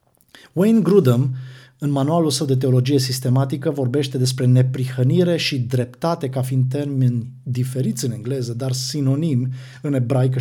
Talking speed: 135 wpm